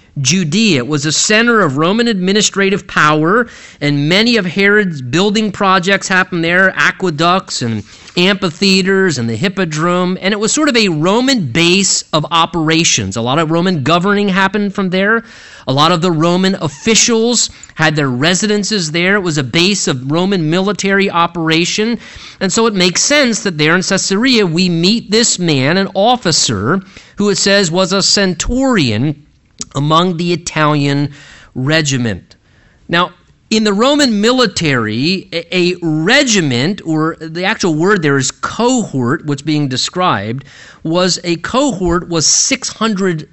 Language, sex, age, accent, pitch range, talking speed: English, male, 30-49, American, 155-205 Hz, 145 wpm